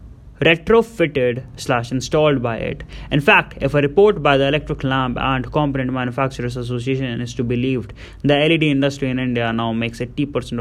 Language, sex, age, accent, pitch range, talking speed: English, male, 20-39, Indian, 120-145 Hz, 160 wpm